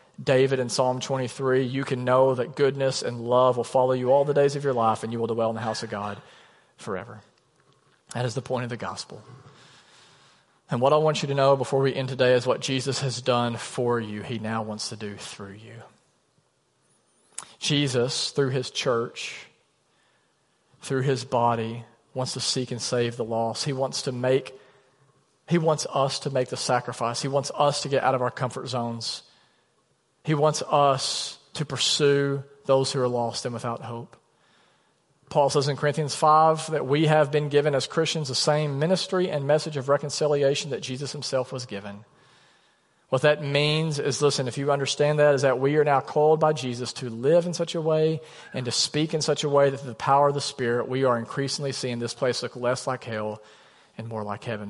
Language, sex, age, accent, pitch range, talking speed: English, male, 40-59, American, 120-145 Hz, 200 wpm